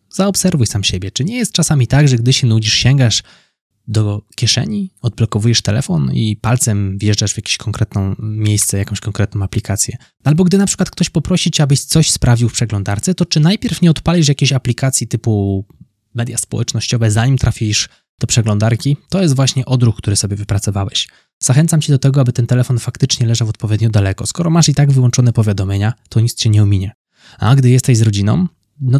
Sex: male